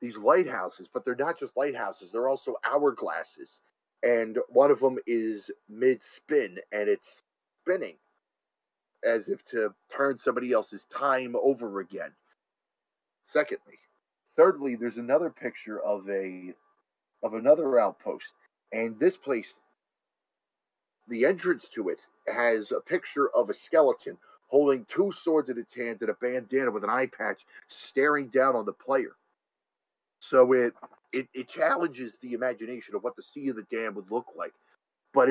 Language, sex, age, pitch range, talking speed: English, male, 30-49, 115-150 Hz, 150 wpm